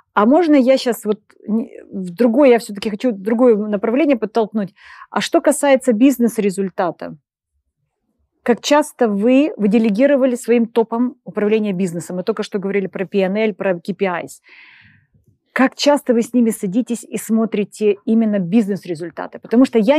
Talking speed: 145 wpm